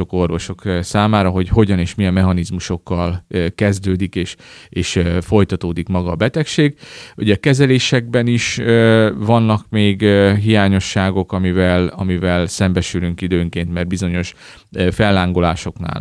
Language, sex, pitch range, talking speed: Hungarian, male, 90-105 Hz, 105 wpm